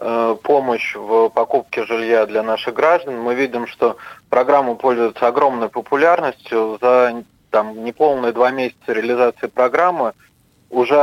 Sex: male